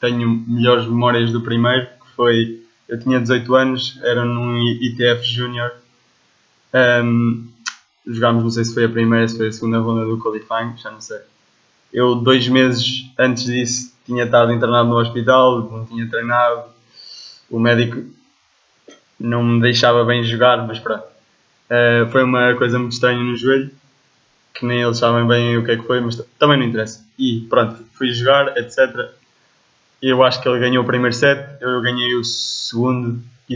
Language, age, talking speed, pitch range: English, 20-39, 165 wpm, 115-125 Hz